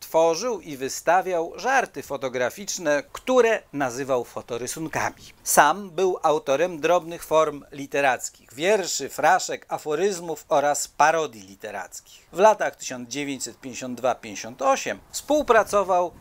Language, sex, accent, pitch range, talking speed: Polish, male, native, 140-200 Hz, 90 wpm